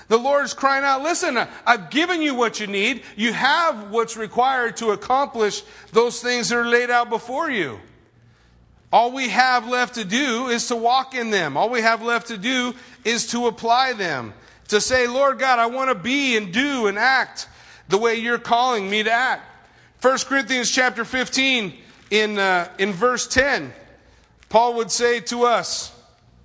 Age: 40-59